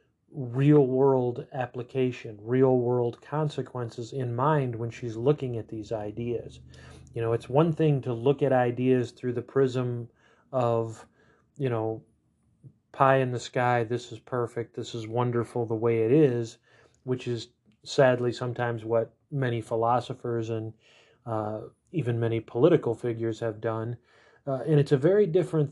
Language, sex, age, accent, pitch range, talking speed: English, male, 30-49, American, 115-135 Hz, 145 wpm